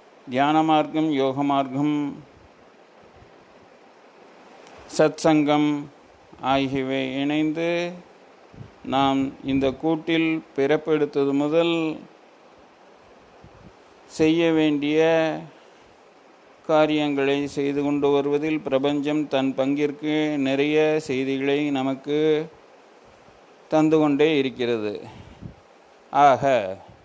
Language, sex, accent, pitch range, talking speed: Tamil, male, native, 135-155 Hz, 60 wpm